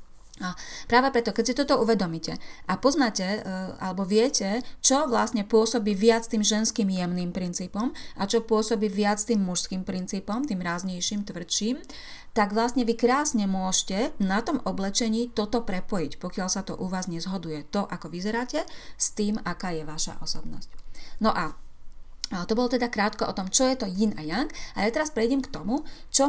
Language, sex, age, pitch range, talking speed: Slovak, female, 30-49, 185-240 Hz, 175 wpm